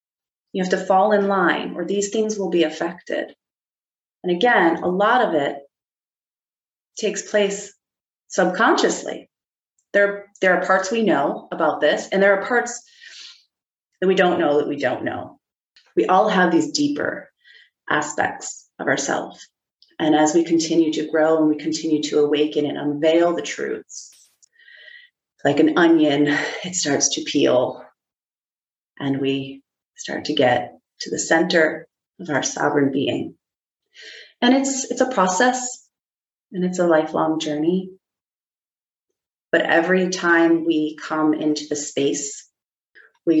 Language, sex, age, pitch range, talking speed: English, female, 30-49, 155-200 Hz, 140 wpm